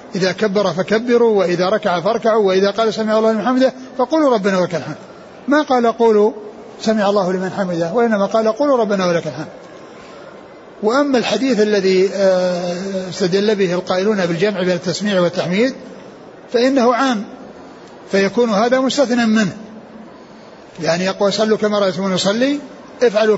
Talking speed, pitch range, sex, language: 135 wpm, 195-240 Hz, male, Arabic